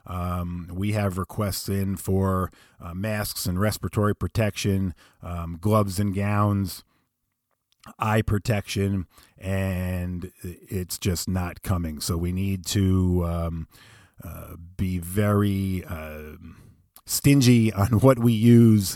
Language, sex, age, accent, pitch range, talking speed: English, male, 40-59, American, 95-110 Hz, 115 wpm